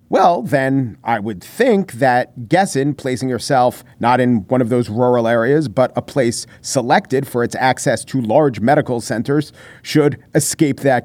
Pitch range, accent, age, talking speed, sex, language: 125-165 Hz, American, 40-59, 165 wpm, male, English